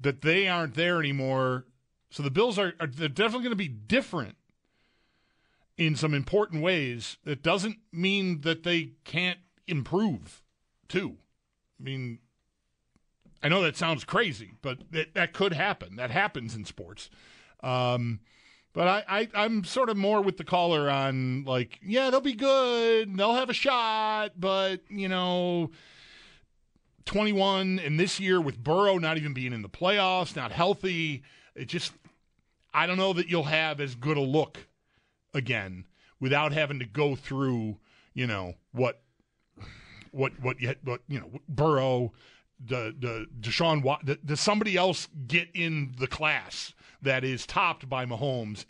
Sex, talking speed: male, 150 wpm